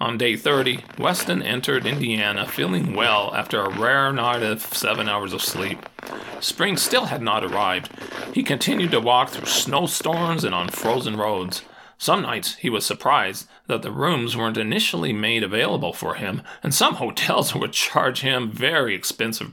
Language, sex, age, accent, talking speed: English, male, 40-59, American, 165 wpm